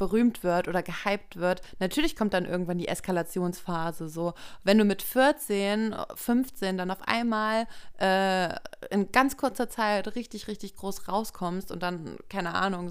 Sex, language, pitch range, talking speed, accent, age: female, German, 185-215 Hz, 155 wpm, German, 20-39